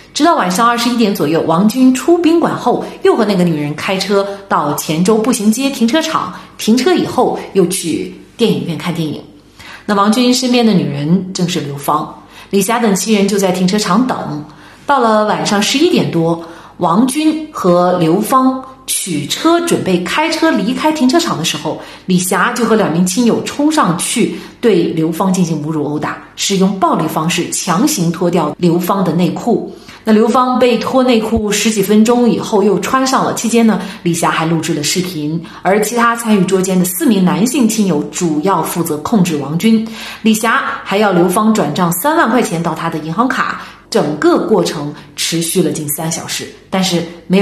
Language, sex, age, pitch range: Chinese, female, 30-49, 170-235 Hz